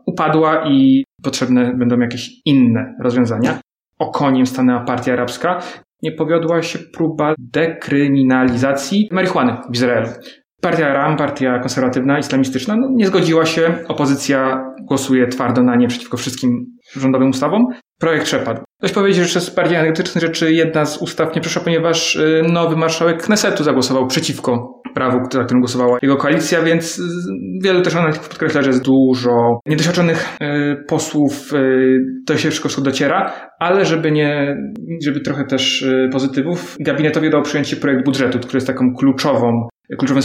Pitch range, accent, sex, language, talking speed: 125-160 Hz, native, male, Polish, 135 wpm